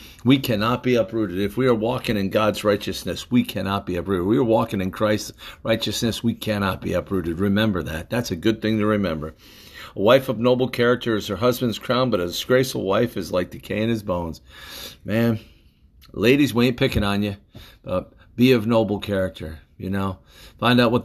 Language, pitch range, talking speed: English, 90-115 Hz, 195 wpm